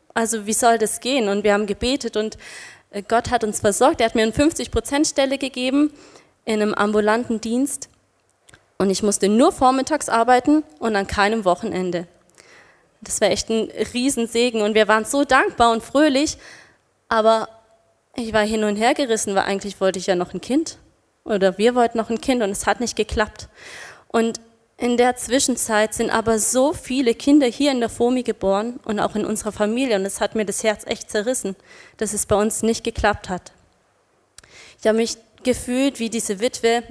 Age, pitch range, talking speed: 20-39, 210-250 Hz, 185 wpm